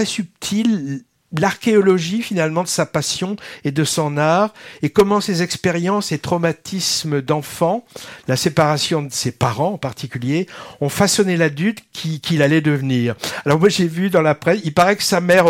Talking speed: 170 wpm